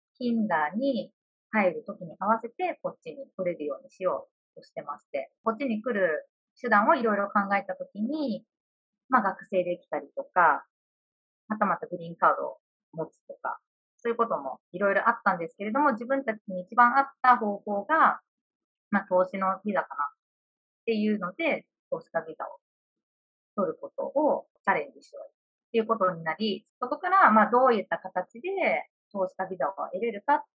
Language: Japanese